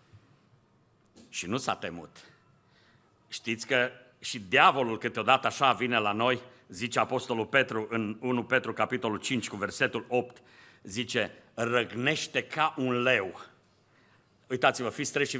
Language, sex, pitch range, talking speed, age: Romanian, male, 120-155 Hz, 130 wpm, 50-69